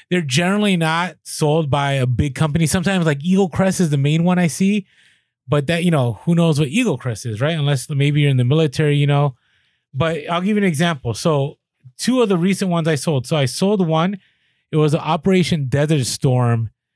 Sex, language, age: male, English, 20-39